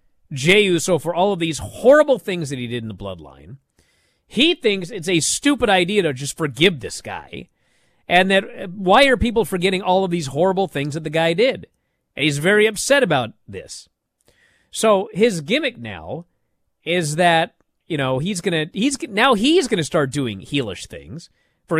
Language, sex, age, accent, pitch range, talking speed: English, male, 40-59, American, 135-210 Hz, 185 wpm